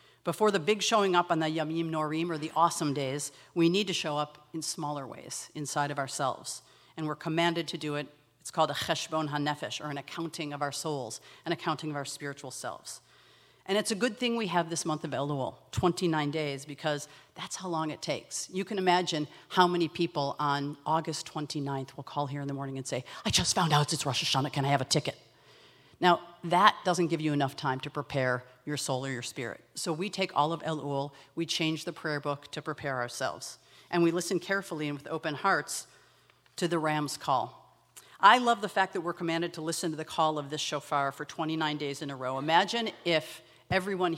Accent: American